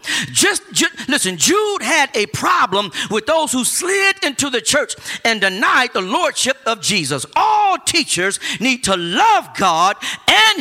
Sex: male